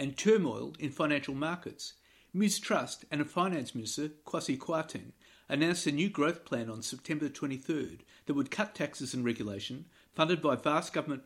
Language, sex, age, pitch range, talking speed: English, male, 50-69, 120-150 Hz, 160 wpm